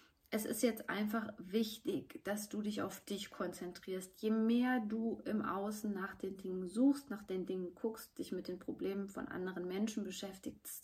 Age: 30-49